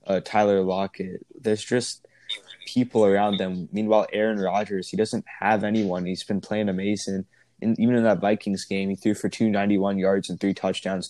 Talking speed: 180 wpm